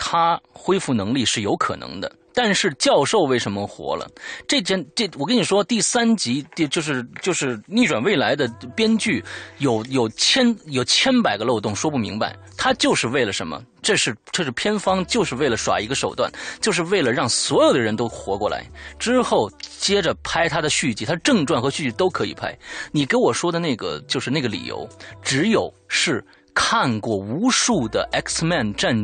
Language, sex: Chinese, male